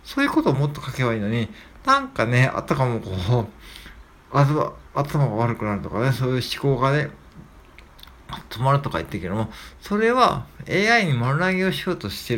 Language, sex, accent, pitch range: Japanese, male, native, 110-160 Hz